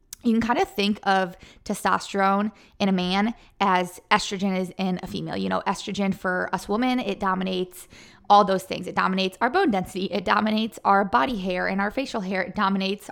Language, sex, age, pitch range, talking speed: English, female, 20-39, 185-210 Hz, 195 wpm